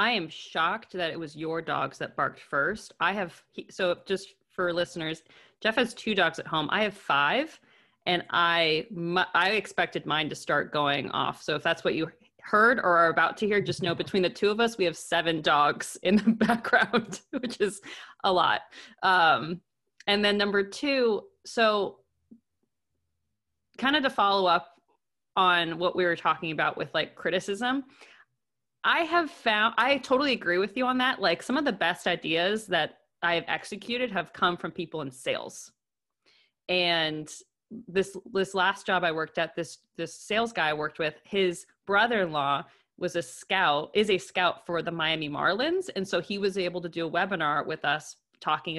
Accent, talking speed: American, 185 wpm